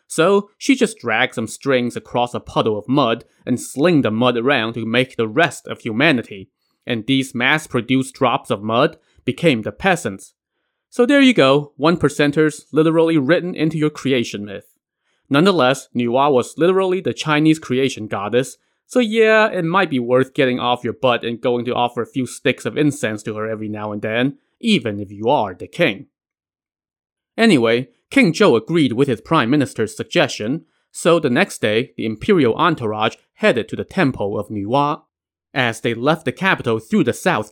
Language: English